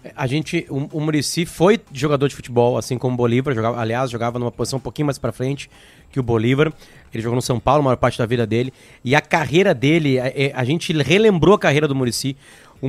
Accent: Brazilian